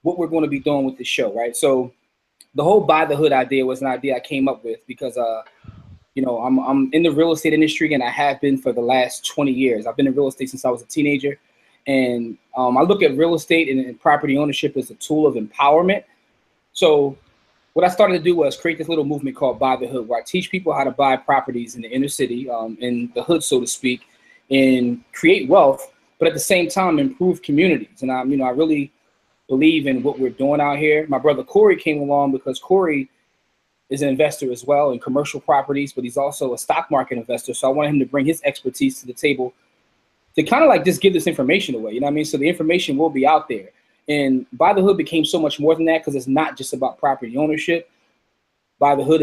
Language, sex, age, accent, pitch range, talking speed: English, male, 20-39, American, 130-160 Hz, 245 wpm